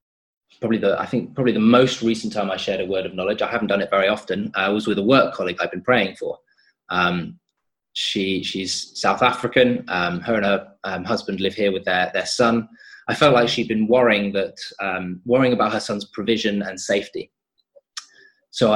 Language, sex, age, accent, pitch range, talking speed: English, male, 20-39, British, 100-120 Hz, 205 wpm